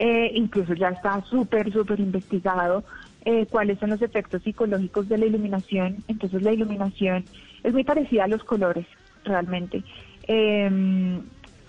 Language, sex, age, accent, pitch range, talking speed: Spanish, female, 20-39, Colombian, 190-225 Hz, 140 wpm